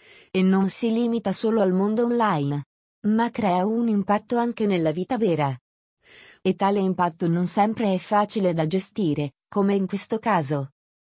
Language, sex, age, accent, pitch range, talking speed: Italian, female, 30-49, native, 175-215 Hz, 155 wpm